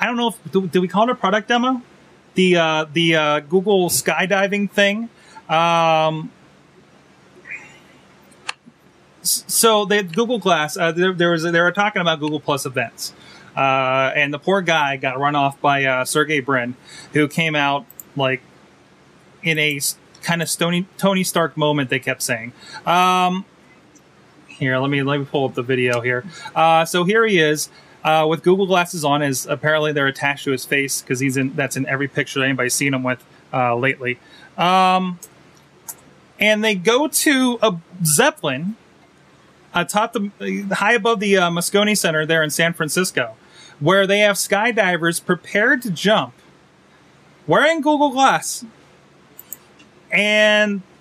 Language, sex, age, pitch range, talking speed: English, male, 30-49, 145-200 Hz, 160 wpm